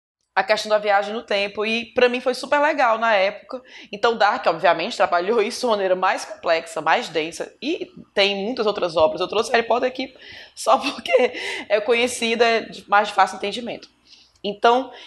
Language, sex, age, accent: Portuguese, female, 20-39, Brazilian